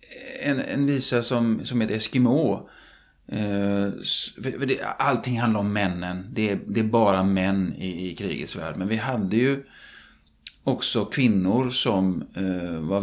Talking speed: 110 wpm